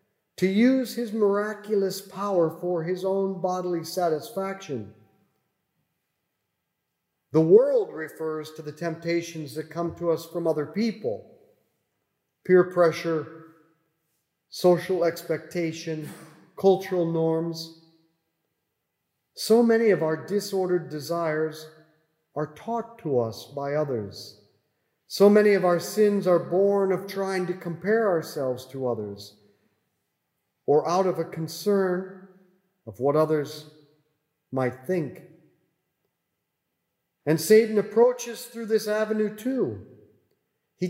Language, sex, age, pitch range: English, male, 50-69, 160-205 Hz